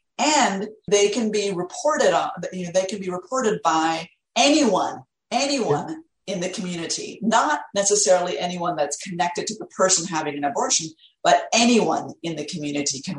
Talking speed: 160 wpm